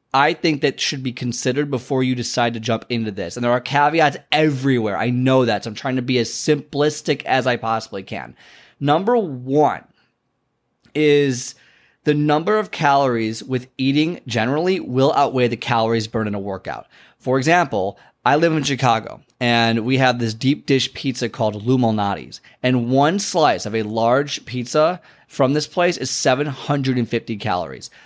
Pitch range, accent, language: 115-150 Hz, American, English